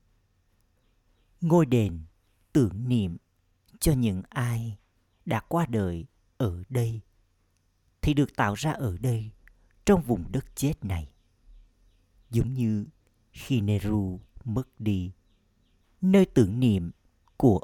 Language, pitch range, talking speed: Vietnamese, 90-120 Hz, 110 wpm